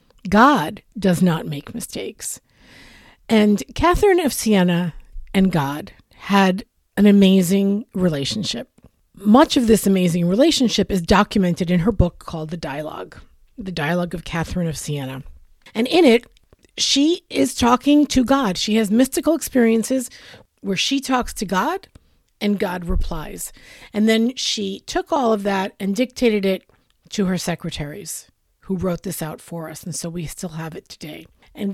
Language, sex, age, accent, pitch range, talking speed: English, female, 50-69, American, 180-250 Hz, 155 wpm